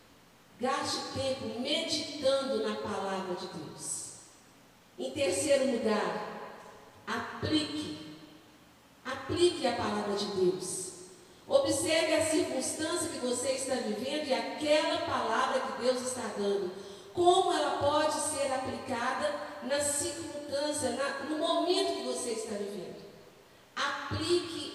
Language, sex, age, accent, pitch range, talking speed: Portuguese, female, 50-69, Brazilian, 225-310 Hz, 105 wpm